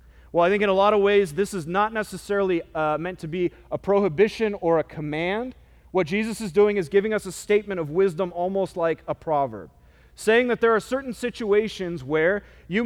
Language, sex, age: English, male, 30-49